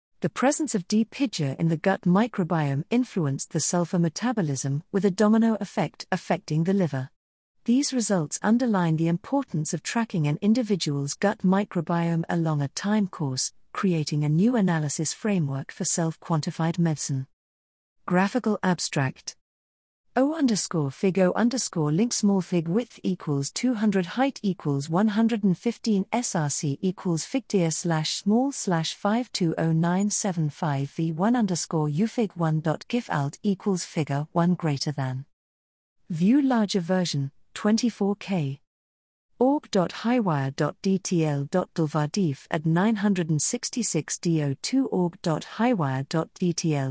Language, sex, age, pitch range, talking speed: English, female, 50-69, 150-200 Hz, 110 wpm